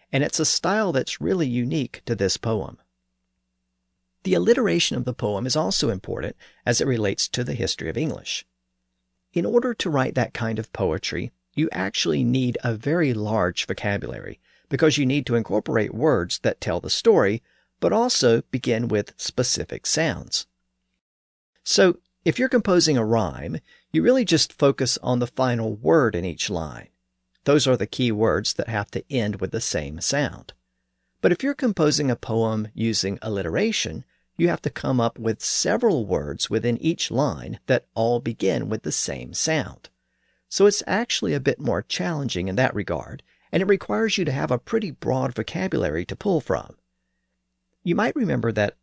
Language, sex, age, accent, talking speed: English, male, 50-69, American, 170 wpm